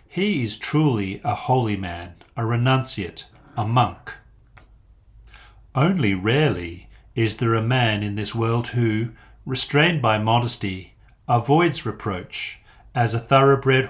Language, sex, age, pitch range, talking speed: English, male, 40-59, 105-130 Hz, 120 wpm